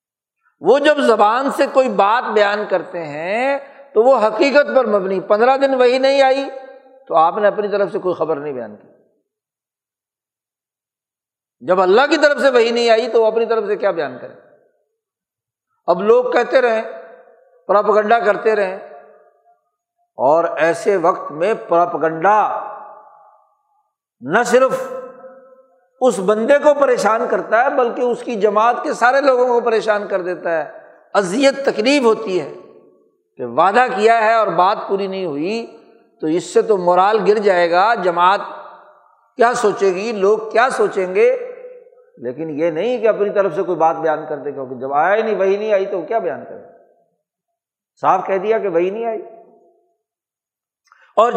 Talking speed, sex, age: 165 wpm, male, 60-79